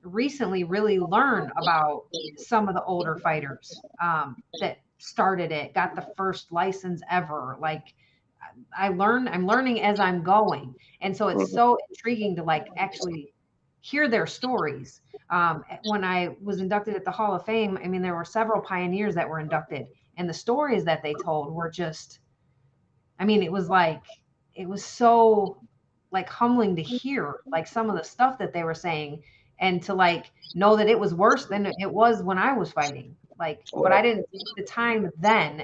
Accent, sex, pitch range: American, female, 170-220 Hz